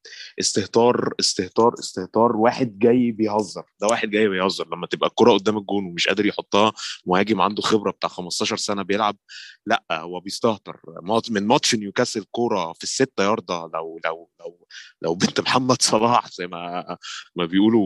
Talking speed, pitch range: 155 wpm, 95-125 Hz